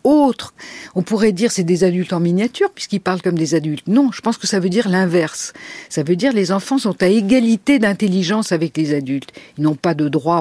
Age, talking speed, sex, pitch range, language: 50-69, 225 wpm, female, 150-225 Hz, French